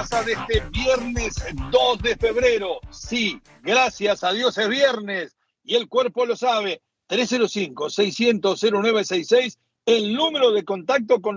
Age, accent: 60-79, Argentinian